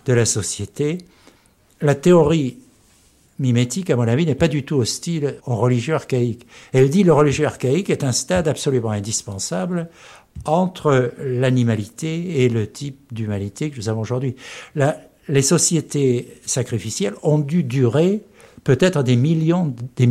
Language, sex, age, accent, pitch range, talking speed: French, male, 60-79, French, 120-170 Hz, 145 wpm